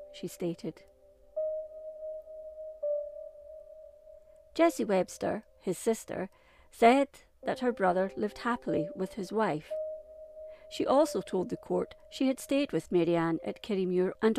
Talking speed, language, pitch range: 115 wpm, English, 185-295 Hz